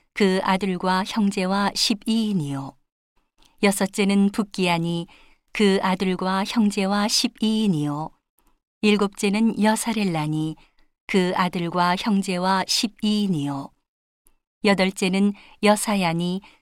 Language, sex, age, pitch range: Korean, female, 40-59, 180-210 Hz